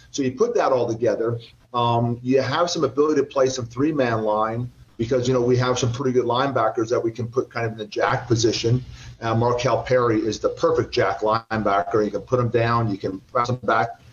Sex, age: male, 40-59